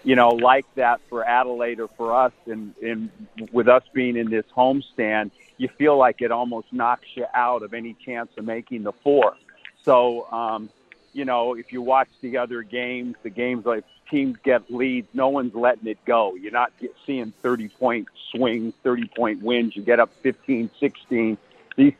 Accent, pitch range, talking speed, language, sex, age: American, 115-125 Hz, 185 wpm, English, male, 50-69